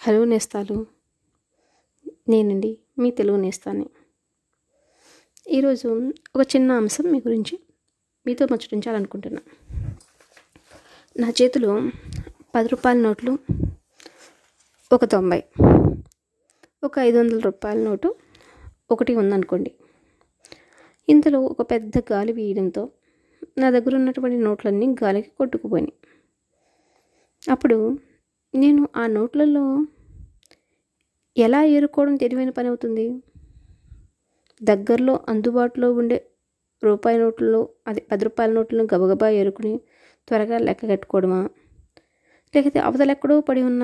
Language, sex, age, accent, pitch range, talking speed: Telugu, female, 20-39, native, 220-270 Hz, 85 wpm